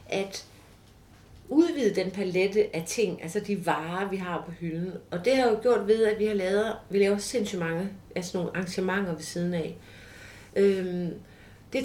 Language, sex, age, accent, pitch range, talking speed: Danish, female, 40-59, native, 170-215 Hz, 175 wpm